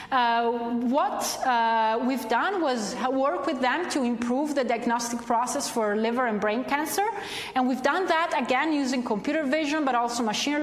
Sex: female